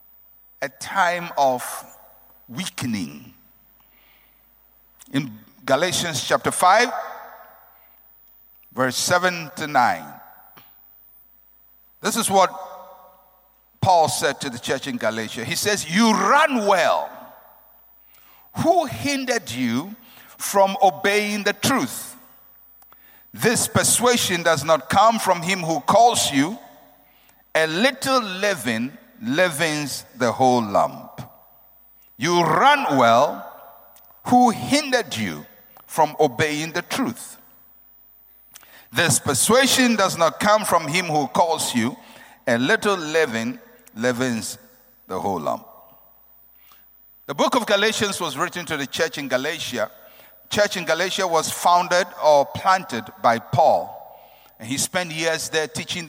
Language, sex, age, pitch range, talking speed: English, male, 60-79, 155-225 Hz, 110 wpm